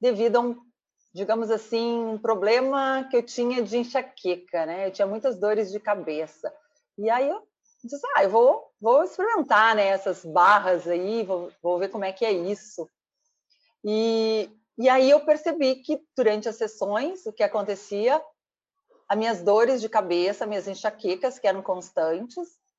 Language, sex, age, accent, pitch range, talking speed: Portuguese, female, 40-59, Brazilian, 195-265 Hz, 165 wpm